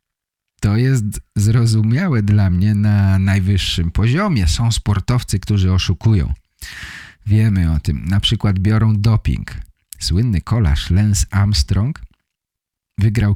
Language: English